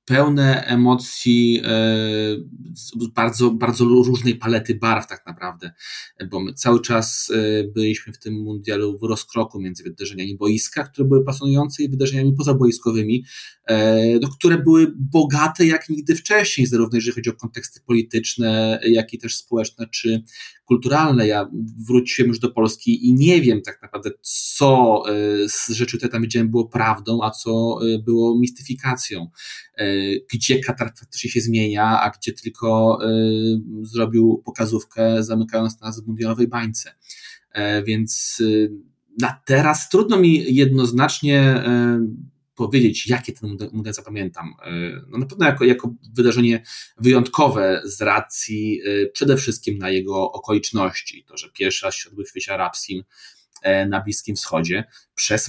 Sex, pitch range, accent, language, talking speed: male, 110-125 Hz, native, Polish, 130 wpm